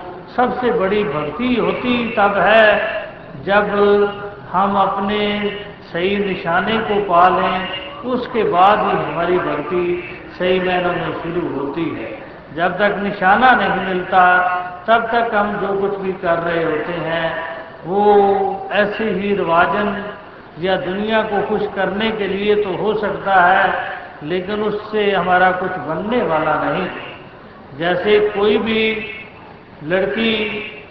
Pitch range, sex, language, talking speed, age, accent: 185-210 Hz, male, Hindi, 130 wpm, 60-79, native